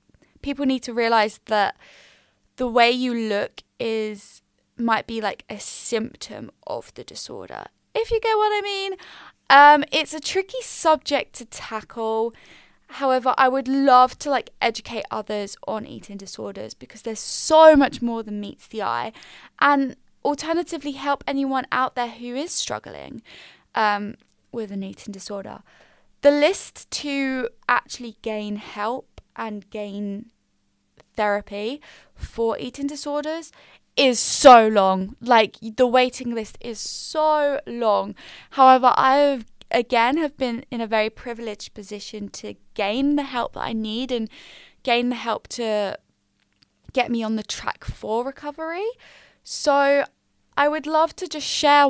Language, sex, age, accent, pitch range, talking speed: English, female, 10-29, British, 220-280 Hz, 145 wpm